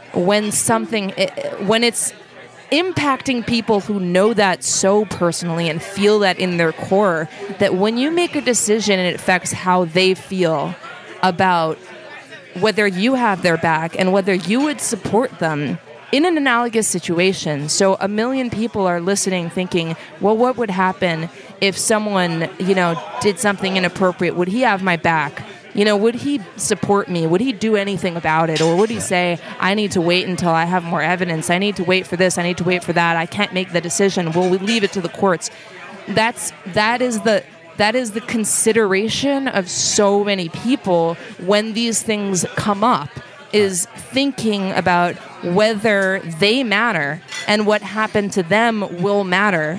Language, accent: English, American